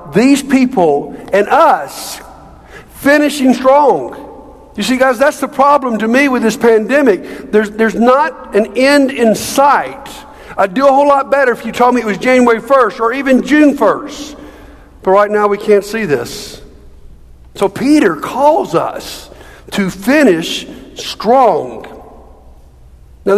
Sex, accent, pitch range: male, American, 175-270 Hz